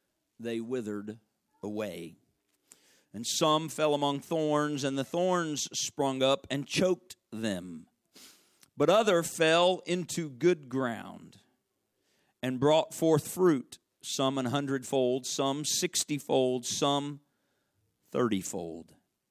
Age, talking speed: 50-69, 105 wpm